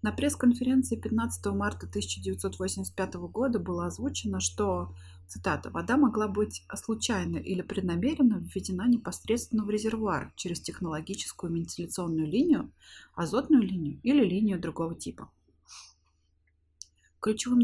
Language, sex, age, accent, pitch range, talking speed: Russian, female, 30-49, native, 170-220 Hz, 105 wpm